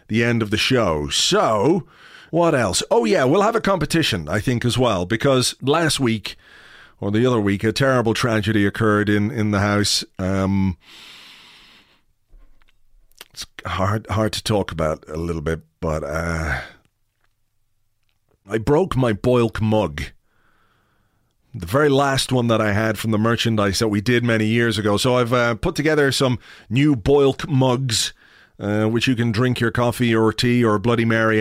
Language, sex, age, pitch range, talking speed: English, male, 40-59, 105-135 Hz, 165 wpm